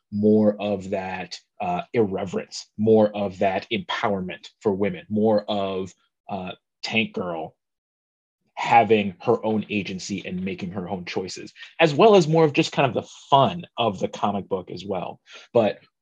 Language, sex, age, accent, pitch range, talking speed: English, male, 30-49, American, 105-130 Hz, 155 wpm